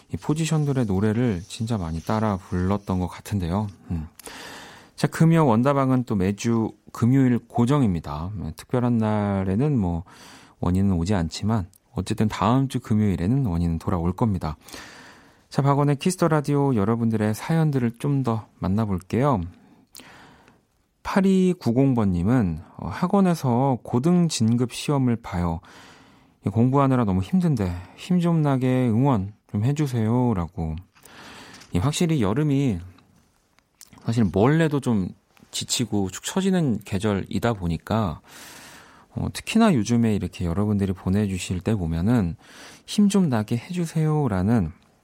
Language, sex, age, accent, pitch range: Korean, male, 40-59, native, 90-130 Hz